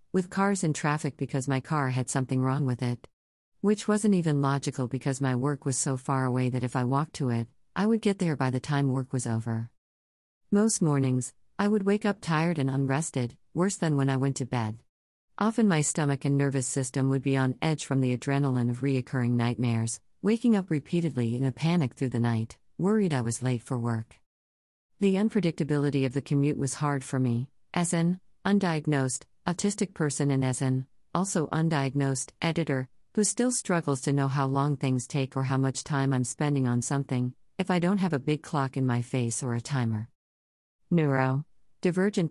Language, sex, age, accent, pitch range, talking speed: English, female, 50-69, American, 130-160 Hz, 195 wpm